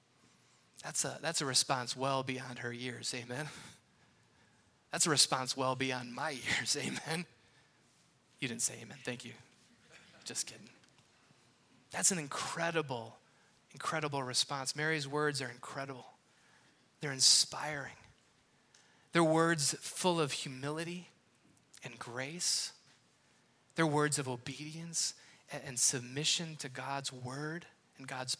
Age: 20-39